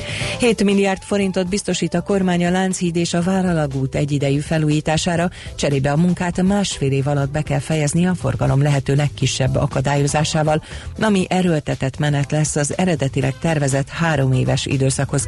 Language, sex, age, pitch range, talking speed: Hungarian, female, 40-59, 130-165 Hz, 140 wpm